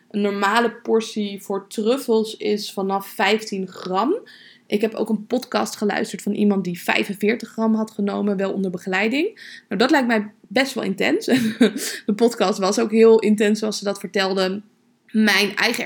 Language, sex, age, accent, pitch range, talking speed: Dutch, female, 20-39, Dutch, 195-225 Hz, 165 wpm